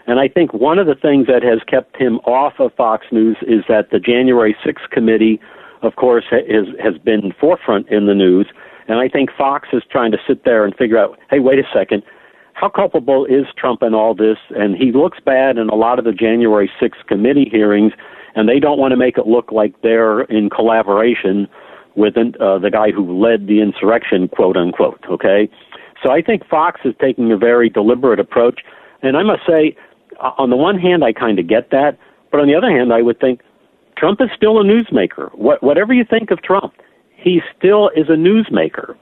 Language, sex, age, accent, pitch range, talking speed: English, male, 50-69, American, 110-135 Hz, 205 wpm